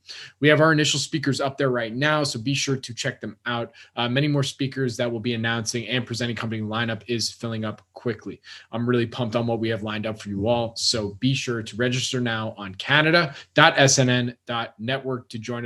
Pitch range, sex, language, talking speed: 110-130 Hz, male, English, 205 wpm